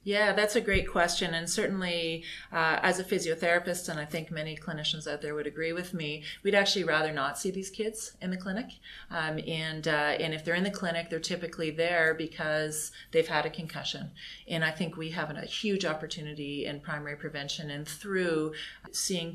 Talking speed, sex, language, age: 195 wpm, female, English, 30-49